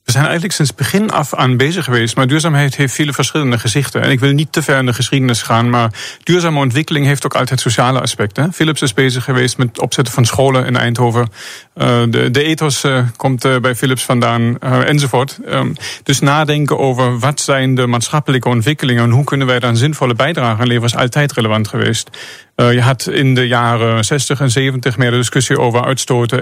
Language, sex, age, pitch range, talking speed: Dutch, male, 40-59, 120-140 Hz, 190 wpm